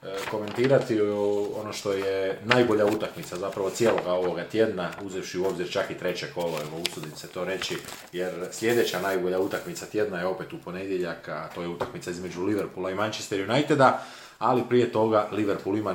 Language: Croatian